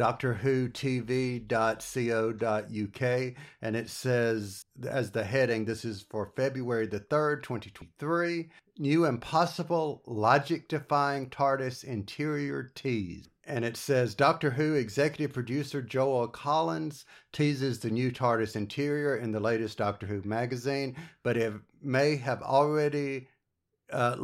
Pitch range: 115-145 Hz